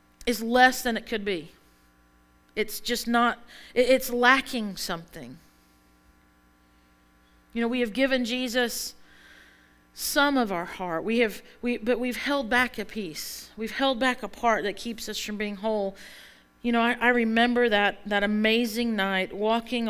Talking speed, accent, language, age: 155 wpm, American, English, 40-59